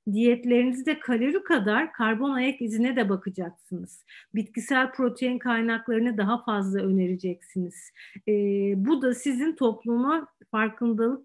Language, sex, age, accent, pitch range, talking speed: Turkish, female, 50-69, native, 215-275 Hz, 105 wpm